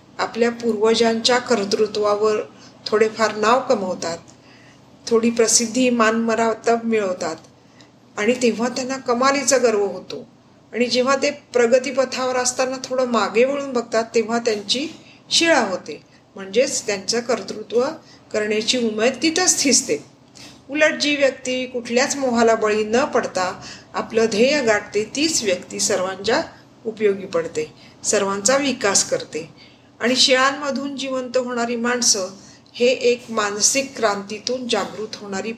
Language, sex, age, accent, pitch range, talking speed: Marathi, female, 50-69, native, 205-255 Hz, 115 wpm